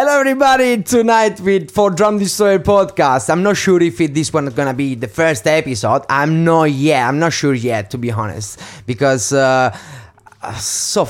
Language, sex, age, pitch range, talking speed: English, male, 30-49, 130-185 Hz, 195 wpm